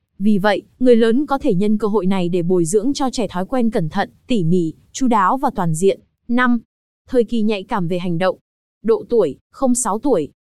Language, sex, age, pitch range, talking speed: Vietnamese, female, 20-39, 190-245 Hz, 215 wpm